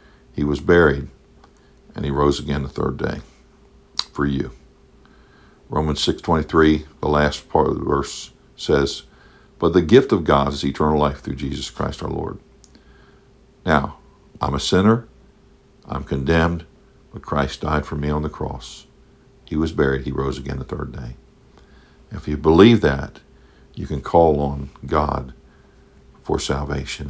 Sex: male